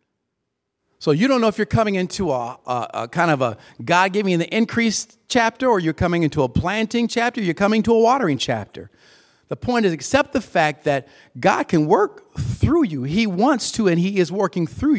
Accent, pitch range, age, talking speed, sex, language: American, 140-205 Hz, 50-69, 210 wpm, male, English